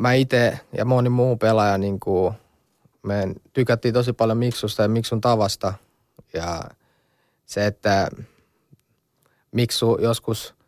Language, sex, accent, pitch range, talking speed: Finnish, male, native, 110-130 Hz, 120 wpm